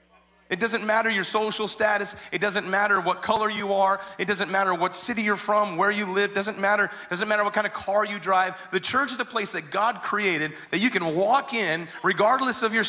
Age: 30-49